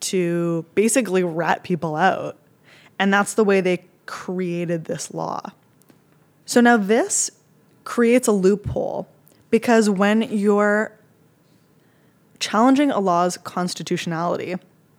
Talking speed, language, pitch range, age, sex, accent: 105 wpm, English, 170-215 Hz, 20-39, female, American